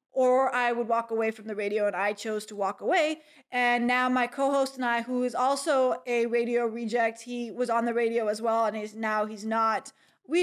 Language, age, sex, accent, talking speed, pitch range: English, 20-39, female, American, 225 wpm, 235-275 Hz